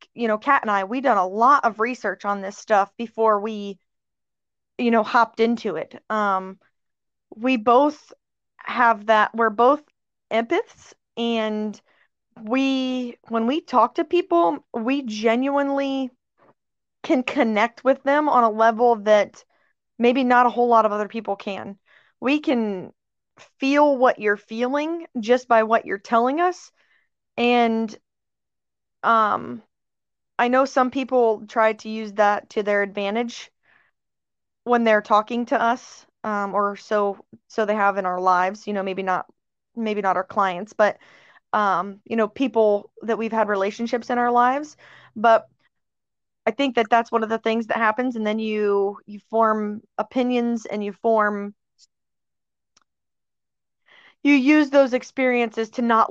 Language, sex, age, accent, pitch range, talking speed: English, female, 20-39, American, 205-245 Hz, 150 wpm